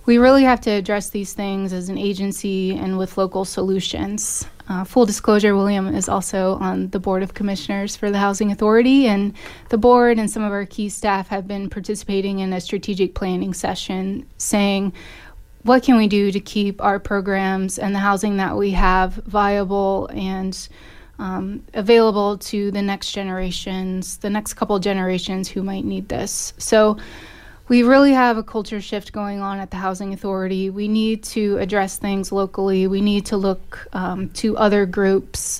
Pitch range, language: 190-210 Hz, English